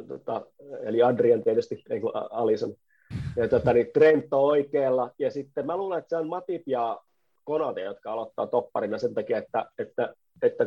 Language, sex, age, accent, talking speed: Finnish, male, 30-49, native, 150 wpm